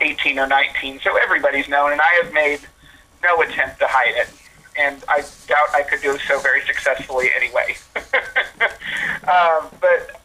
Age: 30-49